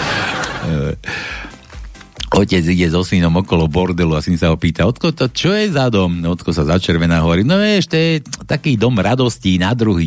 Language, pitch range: Slovak, 90-145 Hz